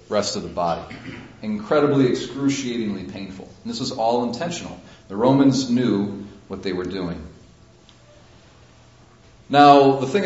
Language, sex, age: English, male, 40-59